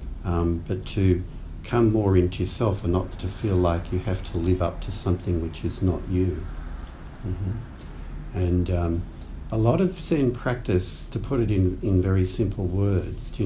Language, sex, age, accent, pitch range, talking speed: English, male, 60-79, Australian, 85-100 Hz, 185 wpm